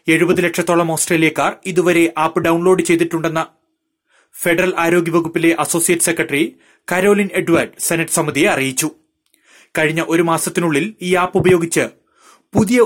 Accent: native